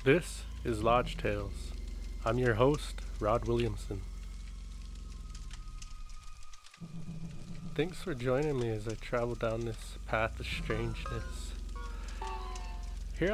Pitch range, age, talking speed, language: 110-145 Hz, 20-39, 100 wpm, English